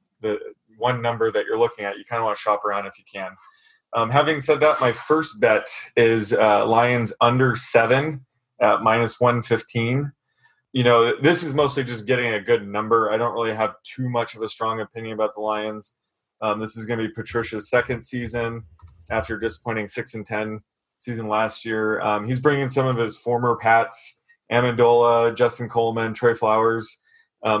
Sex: male